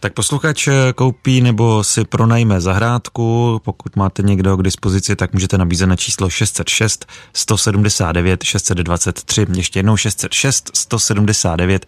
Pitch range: 95-115 Hz